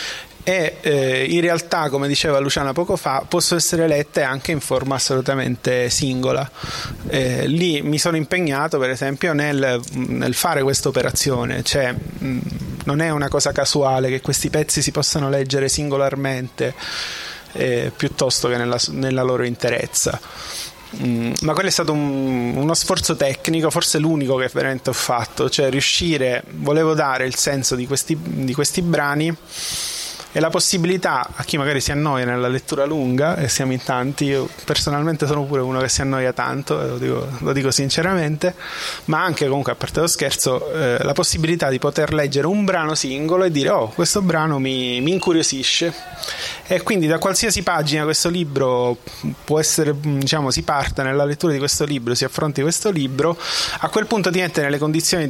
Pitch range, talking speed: 135-165 Hz, 165 wpm